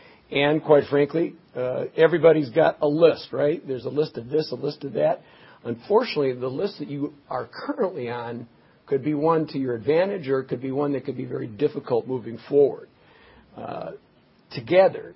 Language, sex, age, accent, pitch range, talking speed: English, male, 50-69, American, 120-150 Hz, 180 wpm